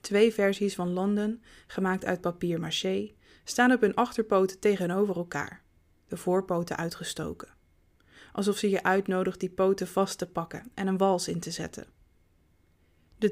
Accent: Dutch